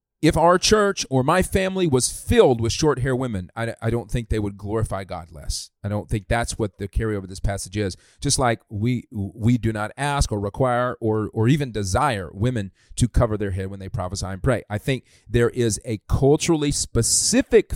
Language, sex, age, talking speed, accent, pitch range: English, male, 40-59, 210 wpm, American, 105-140 Hz